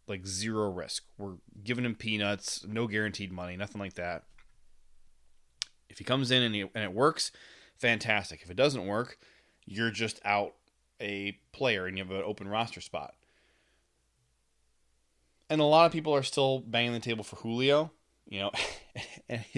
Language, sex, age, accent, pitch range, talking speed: English, male, 20-39, American, 95-125 Hz, 160 wpm